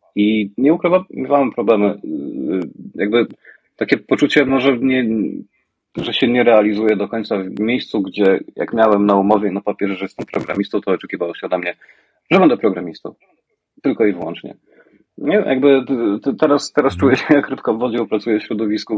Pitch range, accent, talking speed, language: 100-130 Hz, native, 165 wpm, Polish